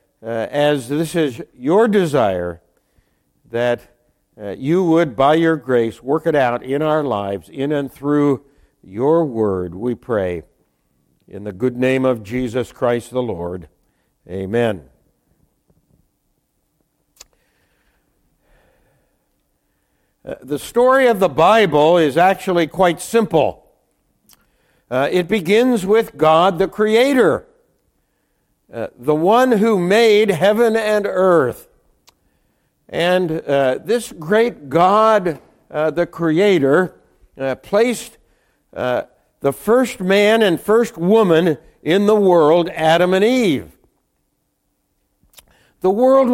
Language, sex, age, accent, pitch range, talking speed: English, male, 60-79, American, 135-215 Hz, 110 wpm